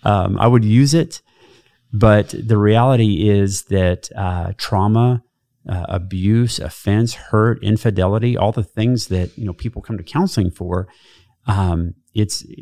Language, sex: English, male